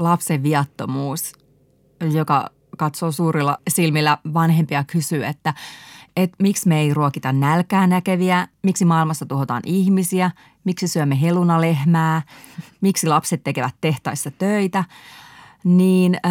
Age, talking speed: 30-49, 105 wpm